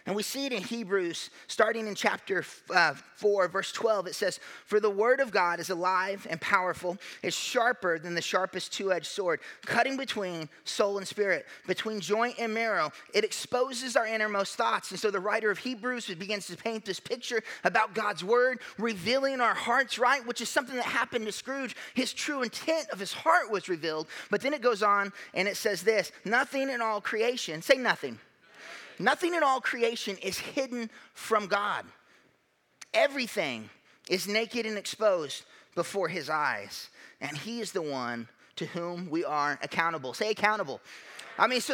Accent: American